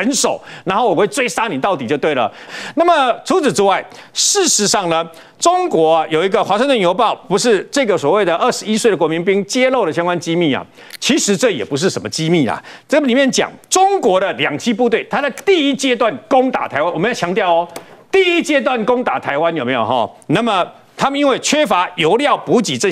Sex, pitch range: male, 185-280 Hz